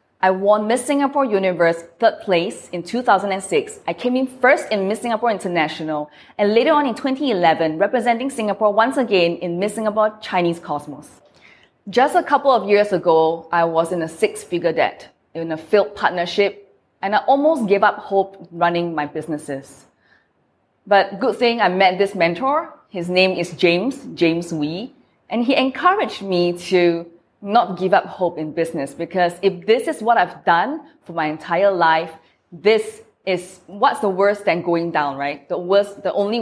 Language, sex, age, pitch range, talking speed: English, female, 20-39, 170-220 Hz, 170 wpm